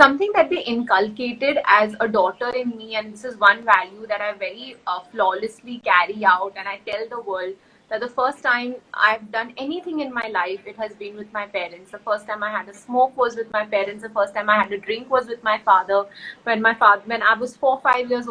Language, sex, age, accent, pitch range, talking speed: Hindi, female, 30-49, native, 210-260 Hz, 245 wpm